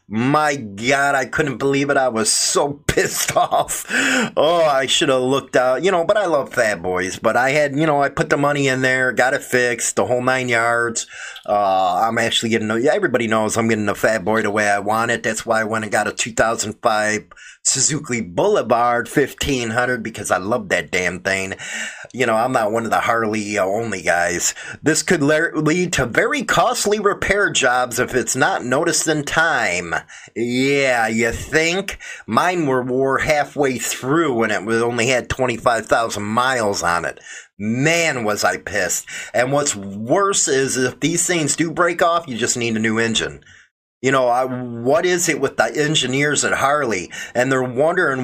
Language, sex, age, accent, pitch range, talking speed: English, male, 30-49, American, 115-155 Hz, 190 wpm